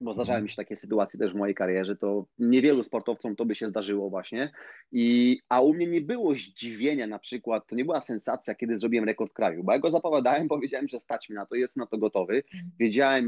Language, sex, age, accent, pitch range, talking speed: Polish, male, 30-49, native, 110-130 Hz, 225 wpm